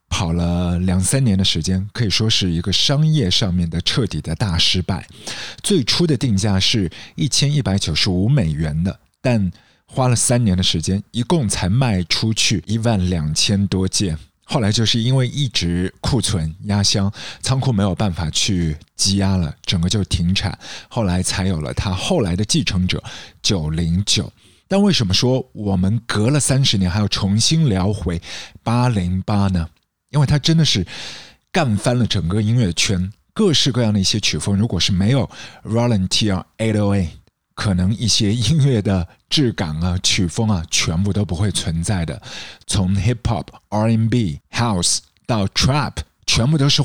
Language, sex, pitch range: Chinese, male, 90-120 Hz